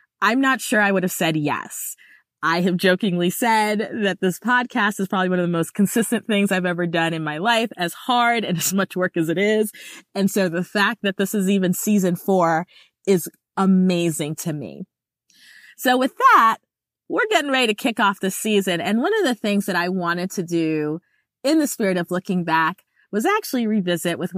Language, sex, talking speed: English, female, 205 wpm